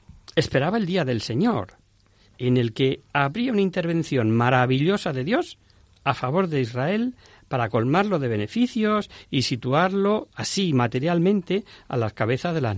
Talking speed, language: 145 wpm, Spanish